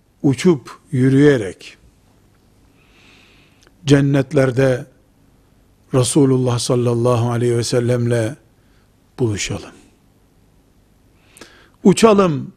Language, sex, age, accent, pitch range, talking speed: Turkish, male, 60-79, native, 110-145 Hz, 50 wpm